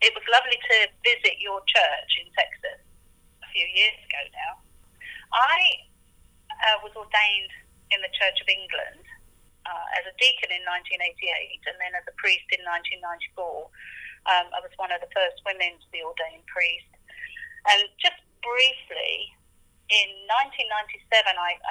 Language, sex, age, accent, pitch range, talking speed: English, female, 30-49, British, 185-280 Hz, 145 wpm